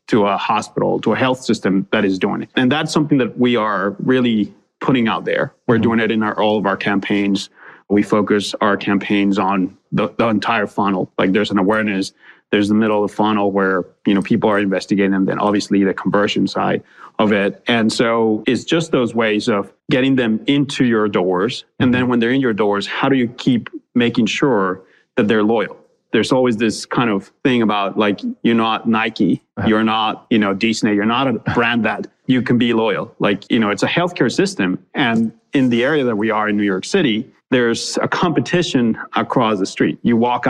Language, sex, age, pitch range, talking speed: English, male, 30-49, 105-125 Hz, 210 wpm